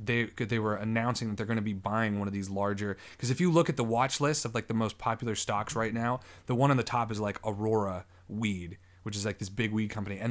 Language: English